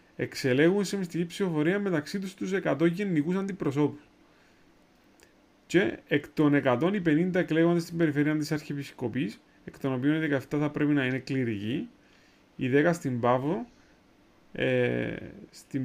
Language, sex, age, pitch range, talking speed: Greek, male, 30-49, 130-175 Hz, 130 wpm